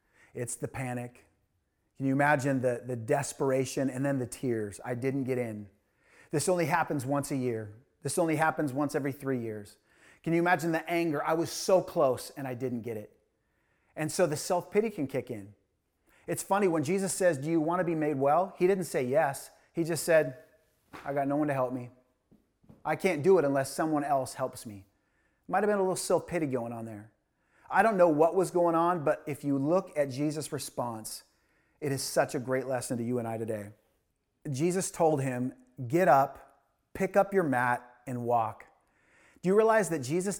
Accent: American